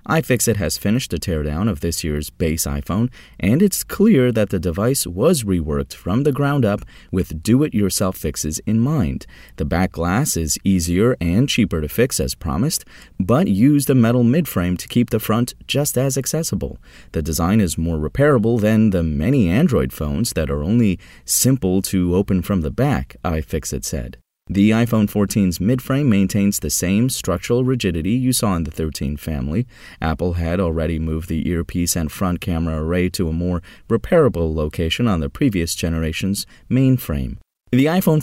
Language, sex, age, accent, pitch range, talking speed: English, male, 30-49, American, 80-120 Hz, 170 wpm